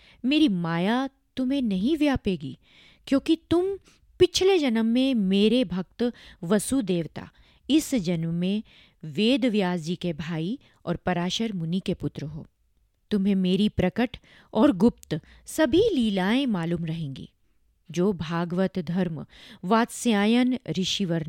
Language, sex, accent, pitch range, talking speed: Hindi, female, native, 175-250 Hz, 115 wpm